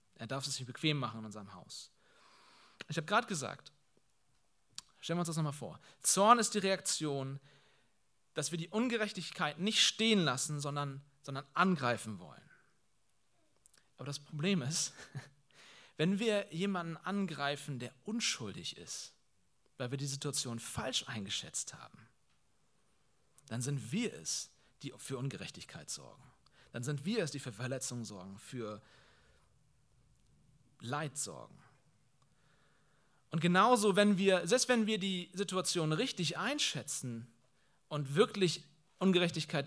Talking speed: 130 wpm